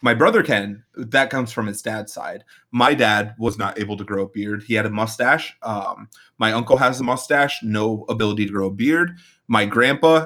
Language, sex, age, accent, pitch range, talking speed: English, male, 30-49, American, 110-150 Hz, 210 wpm